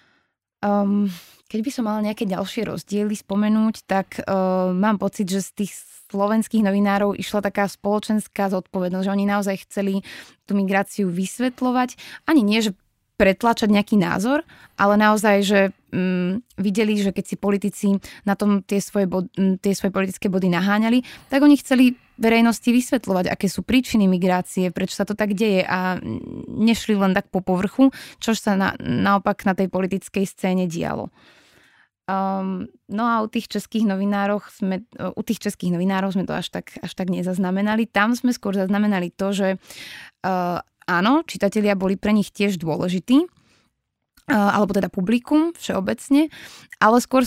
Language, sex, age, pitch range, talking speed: Slovak, female, 20-39, 190-220 Hz, 155 wpm